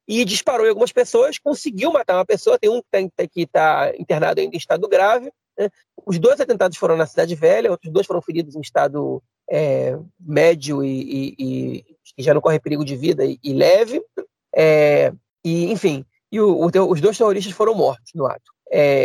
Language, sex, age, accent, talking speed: Portuguese, male, 40-59, Brazilian, 190 wpm